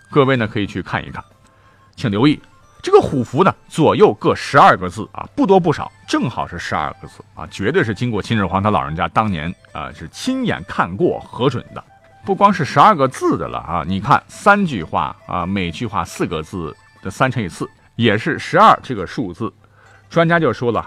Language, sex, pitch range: Chinese, male, 90-130 Hz